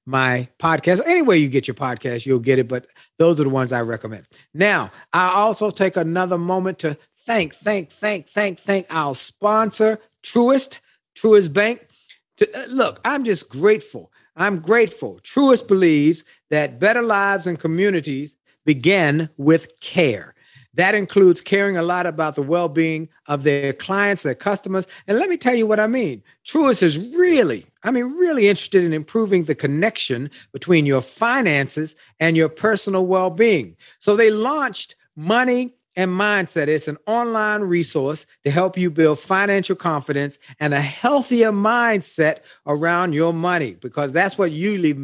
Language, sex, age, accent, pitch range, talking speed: English, male, 50-69, American, 150-210 Hz, 155 wpm